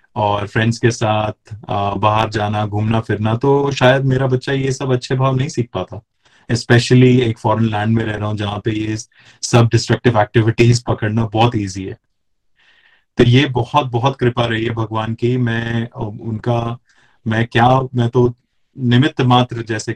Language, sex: Hindi, male